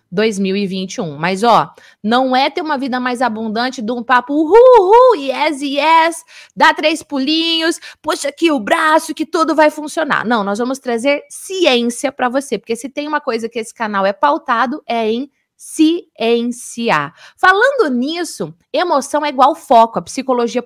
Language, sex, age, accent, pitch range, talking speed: Portuguese, female, 20-39, Brazilian, 225-305 Hz, 165 wpm